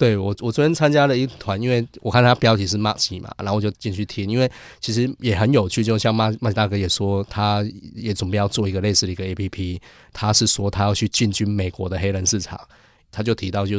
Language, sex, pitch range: Chinese, male, 100-115 Hz